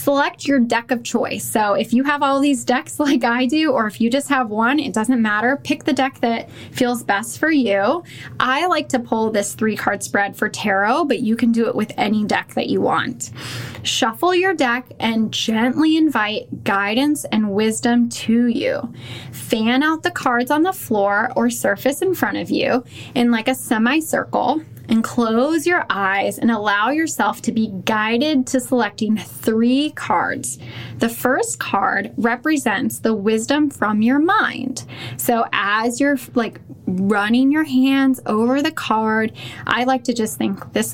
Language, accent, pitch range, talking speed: English, American, 220-280 Hz, 175 wpm